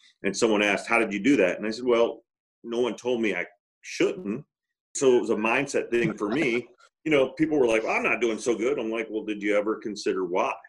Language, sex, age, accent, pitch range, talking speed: English, male, 40-59, American, 105-160 Hz, 245 wpm